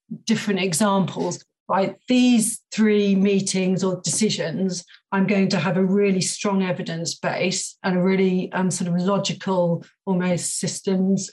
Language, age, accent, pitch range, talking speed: English, 40-59, British, 185-205 Hz, 145 wpm